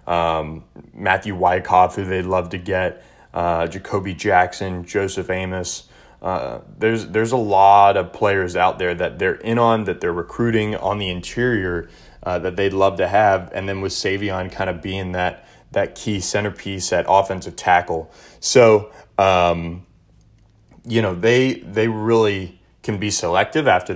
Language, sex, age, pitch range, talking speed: English, male, 20-39, 95-110 Hz, 160 wpm